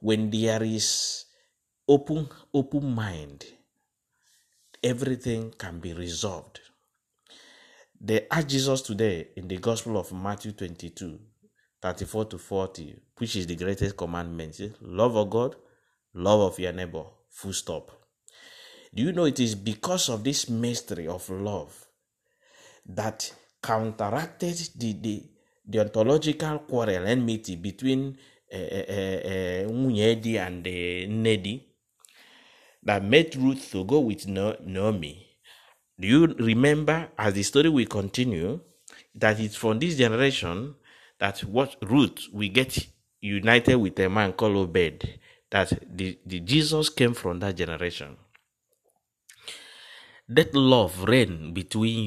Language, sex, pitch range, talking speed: English, male, 95-130 Hz, 125 wpm